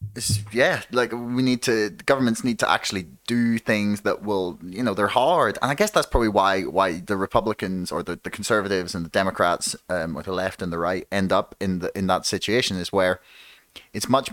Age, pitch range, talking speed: 30-49, 95-120 Hz, 215 wpm